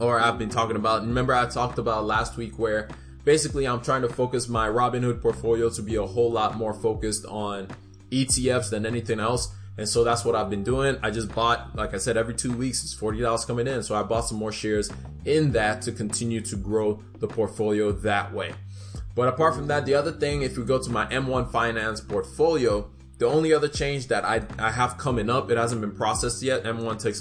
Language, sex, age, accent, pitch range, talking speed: English, male, 20-39, American, 105-125 Hz, 225 wpm